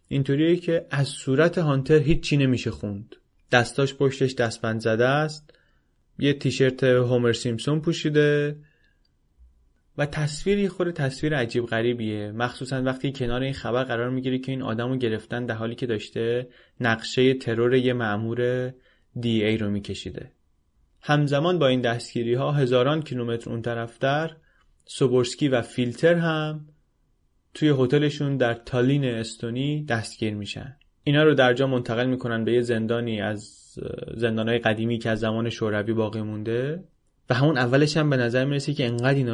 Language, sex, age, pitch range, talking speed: Persian, male, 20-39, 115-140 Hz, 150 wpm